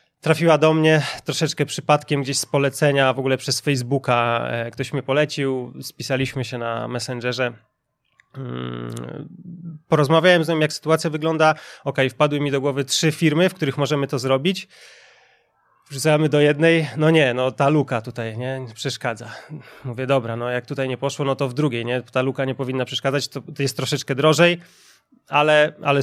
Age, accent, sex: 20-39, native, male